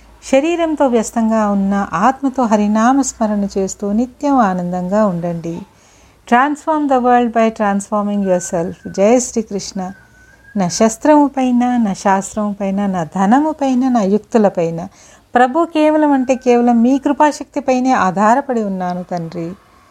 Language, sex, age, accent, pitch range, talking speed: Telugu, female, 60-79, native, 195-245 Hz, 115 wpm